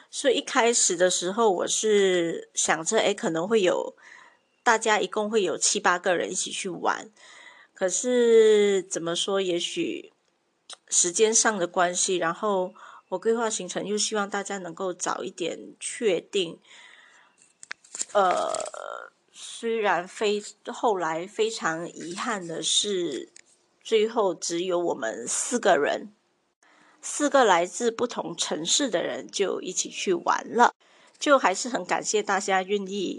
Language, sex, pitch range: Chinese, female, 185-275 Hz